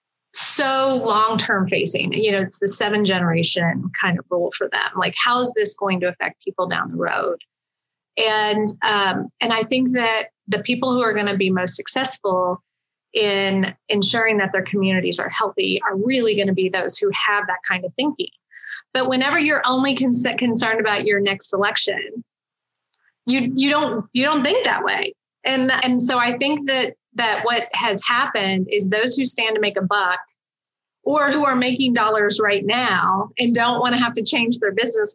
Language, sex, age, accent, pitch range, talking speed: English, female, 20-39, American, 200-245 Hz, 185 wpm